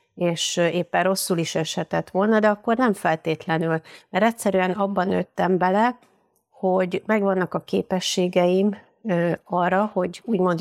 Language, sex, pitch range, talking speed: Hungarian, female, 165-195 Hz, 125 wpm